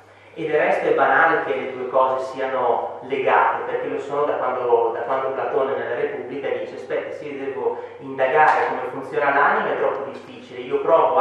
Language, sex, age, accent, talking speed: Italian, male, 30-49, native, 185 wpm